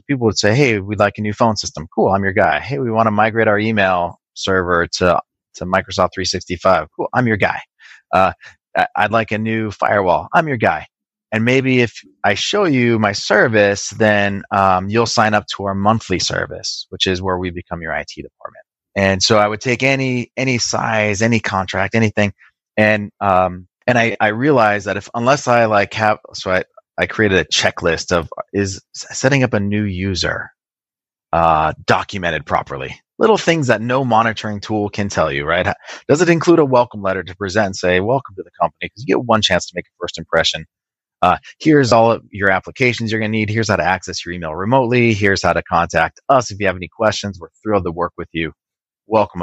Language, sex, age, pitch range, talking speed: English, male, 30-49, 95-115 Hz, 205 wpm